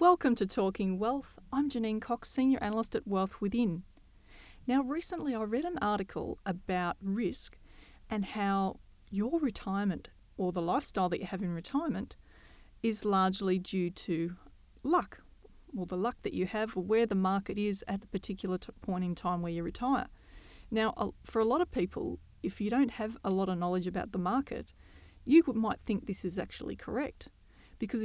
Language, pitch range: English, 185-235 Hz